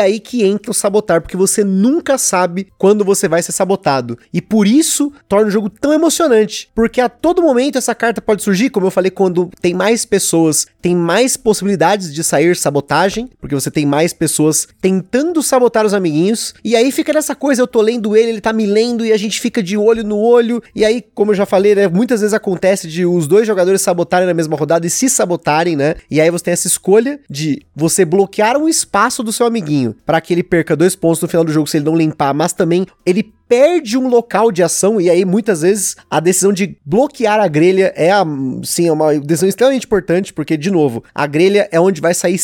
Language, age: Portuguese, 30-49